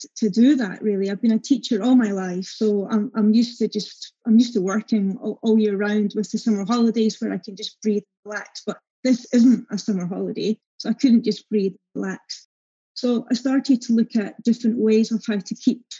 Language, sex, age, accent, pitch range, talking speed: English, female, 30-49, British, 210-240 Hz, 220 wpm